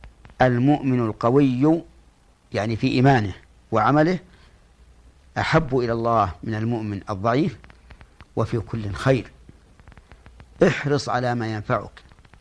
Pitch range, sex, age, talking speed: 80-125 Hz, male, 50-69, 90 wpm